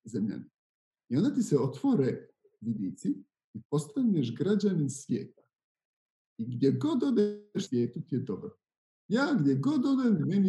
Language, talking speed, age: Croatian, 135 wpm, 50-69